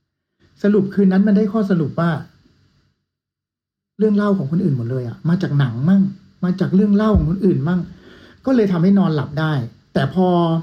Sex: male